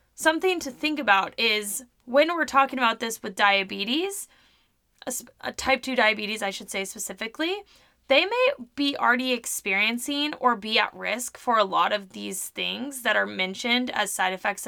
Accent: American